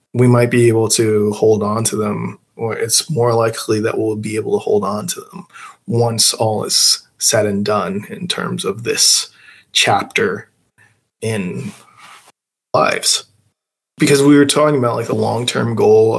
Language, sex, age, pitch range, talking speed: English, male, 20-39, 110-130 Hz, 165 wpm